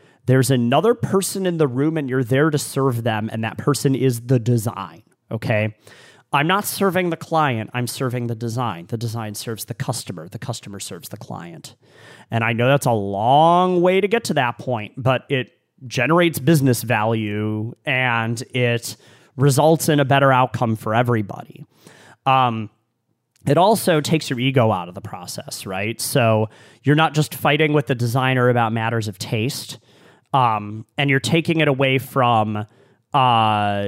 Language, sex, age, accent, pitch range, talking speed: English, male, 30-49, American, 115-145 Hz, 170 wpm